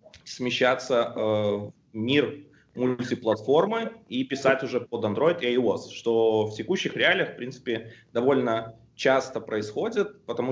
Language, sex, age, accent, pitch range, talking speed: Russian, male, 20-39, native, 115-135 Hz, 120 wpm